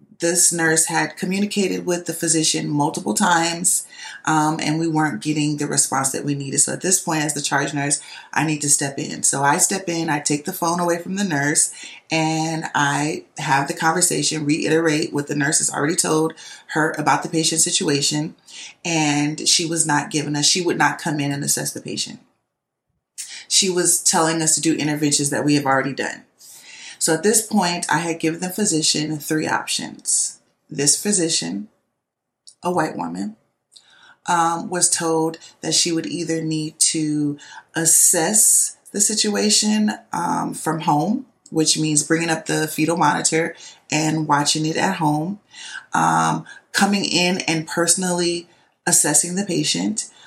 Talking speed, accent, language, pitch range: 165 wpm, American, English, 150-170 Hz